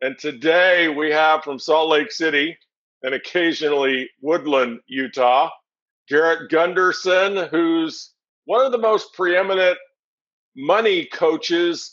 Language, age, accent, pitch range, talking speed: English, 50-69, American, 135-165 Hz, 110 wpm